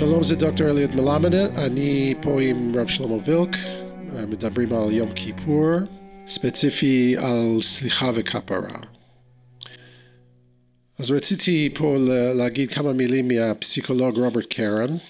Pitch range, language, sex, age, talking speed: 120-155 Hz, Hebrew, male, 50-69, 110 wpm